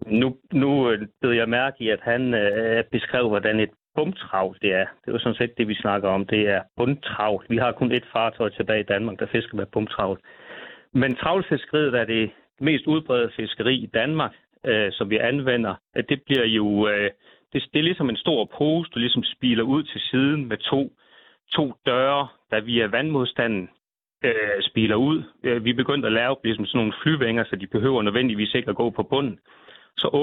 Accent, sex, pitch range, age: native, male, 110-135 Hz, 30-49